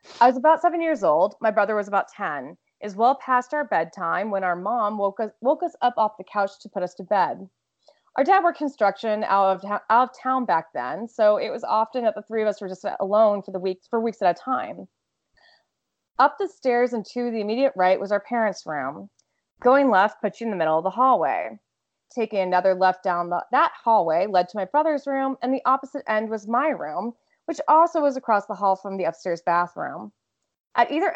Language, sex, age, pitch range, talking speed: English, female, 20-39, 195-260 Hz, 225 wpm